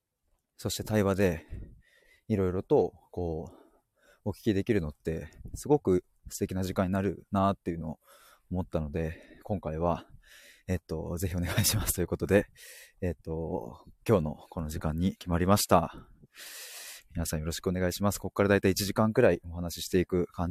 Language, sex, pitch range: Japanese, male, 85-120 Hz